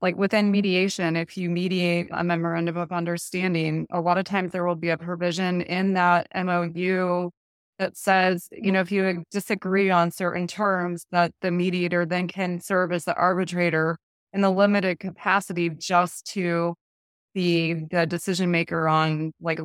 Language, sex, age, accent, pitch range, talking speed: English, female, 20-39, American, 170-190 Hz, 160 wpm